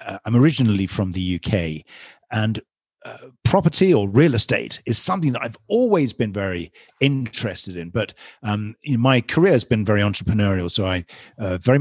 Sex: male